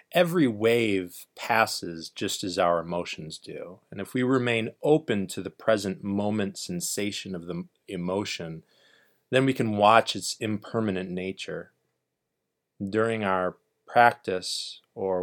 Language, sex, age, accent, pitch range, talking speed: English, male, 30-49, American, 95-115 Hz, 125 wpm